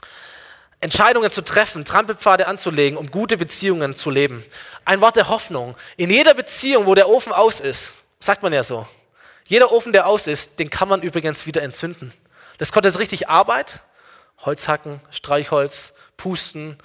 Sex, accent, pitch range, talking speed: male, German, 150-195 Hz, 160 wpm